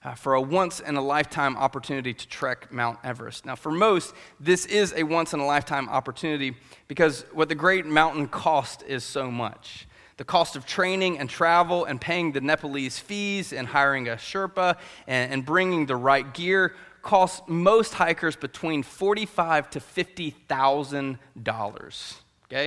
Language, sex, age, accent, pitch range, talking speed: English, male, 30-49, American, 135-175 Hz, 145 wpm